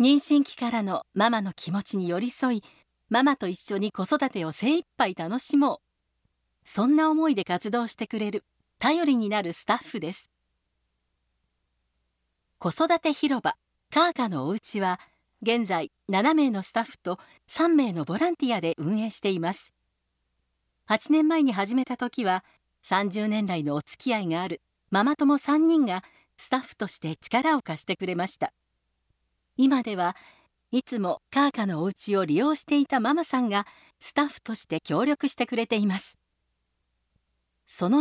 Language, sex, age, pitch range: Japanese, female, 50-69, 175-265 Hz